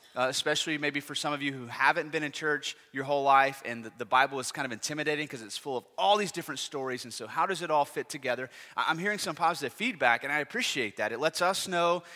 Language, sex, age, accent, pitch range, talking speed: English, male, 30-49, American, 135-170 Hz, 255 wpm